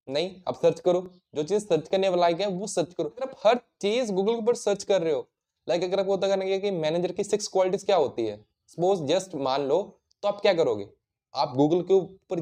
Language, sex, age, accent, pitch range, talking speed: Hindi, male, 20-39, native, 165-210 Hz, 160 wpm